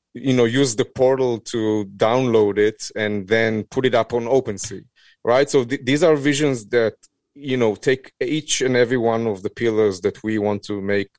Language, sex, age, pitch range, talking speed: English, male, 30-49, 100-115 Hz, 200 wpm